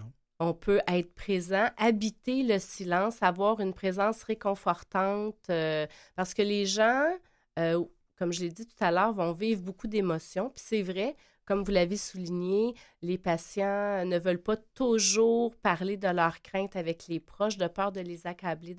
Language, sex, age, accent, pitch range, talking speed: French, female, 30-49, Canadian, 175-210 Hz, 170 wpm